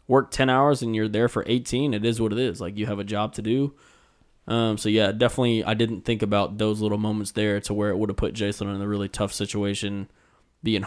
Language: English